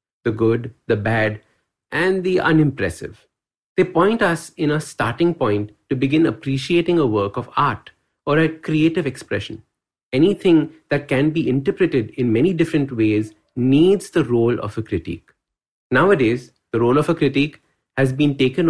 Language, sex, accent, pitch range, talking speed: English, male, Indian, 120-160 Hz, 155 wpm